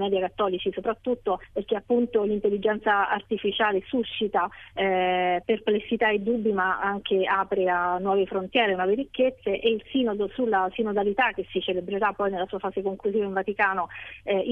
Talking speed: 150 wpm